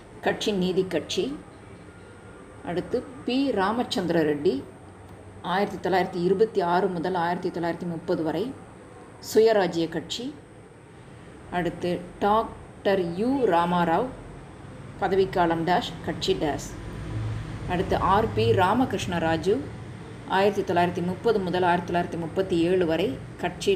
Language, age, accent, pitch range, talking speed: Tamil, 20-39, native, 155-195 Hz, 75 wpm